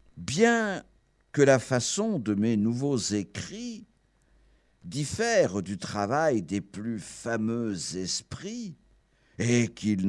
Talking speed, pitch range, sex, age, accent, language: 100 wpm, 90-140 Hz, male, 60-79, French, French